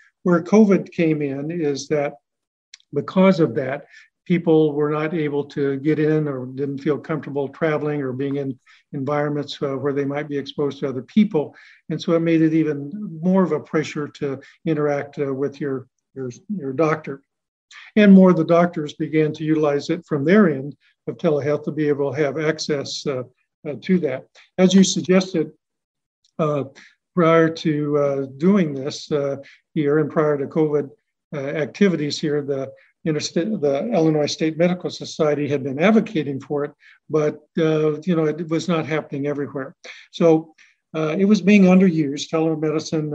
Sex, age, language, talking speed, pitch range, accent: male, 50-69, English, 165 wpm, 145-165 Hz, American